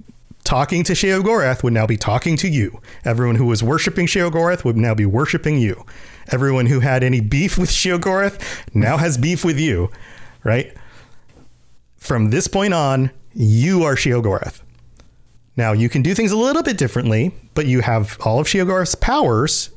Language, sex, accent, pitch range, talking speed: English, male, American, 120-175 Hz, 165 wpm